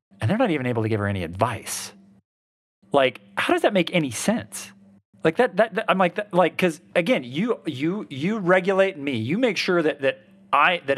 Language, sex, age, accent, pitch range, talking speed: English, male, 40-59, American, 105-170 Hz, 215 wpm